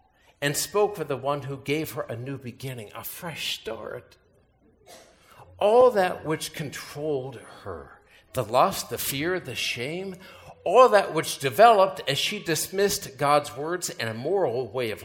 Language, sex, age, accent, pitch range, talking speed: English, male, 60-79, American, 115-165 Hz, 155 wpm